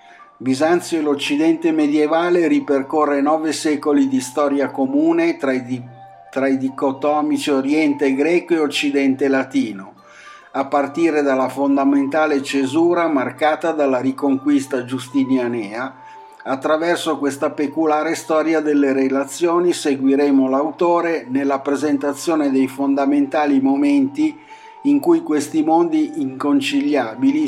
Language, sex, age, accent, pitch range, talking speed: Italian, male, 60-79, native, 135-165 Hz, 105 wpm